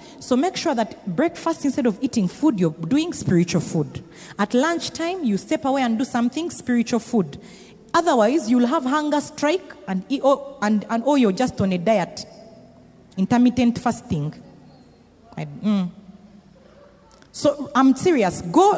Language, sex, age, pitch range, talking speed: English, female, 40-59, 200-310 Hz, 150 wpm